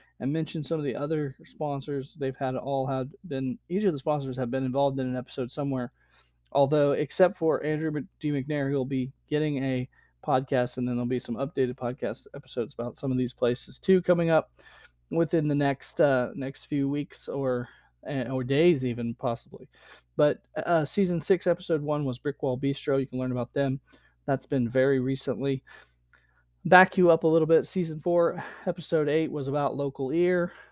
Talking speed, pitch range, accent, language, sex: 185 wpm, 130-155 Hz, American, English, male